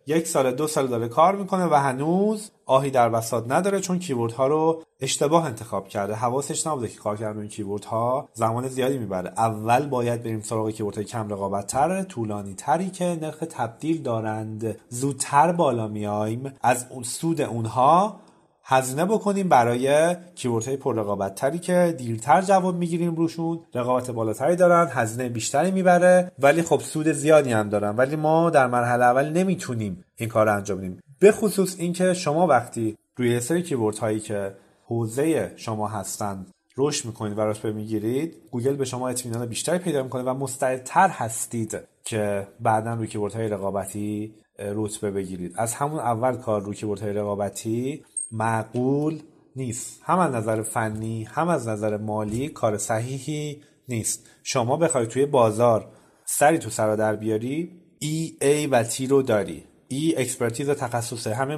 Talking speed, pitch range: 145 wpm, 110-150 Hz